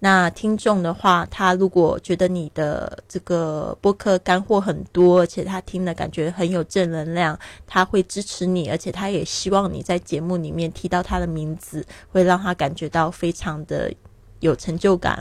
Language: Chinese